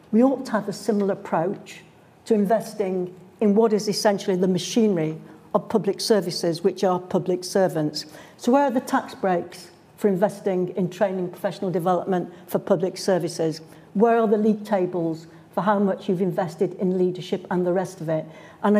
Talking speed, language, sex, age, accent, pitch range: 175 wpm, English, female, 60-79, British, 175-215 Hz